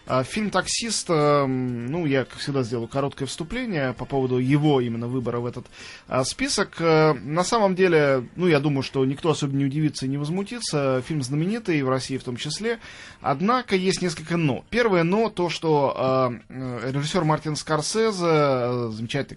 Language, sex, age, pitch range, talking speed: Russian, male, 20-39, 130-175 Hz, 160 wpm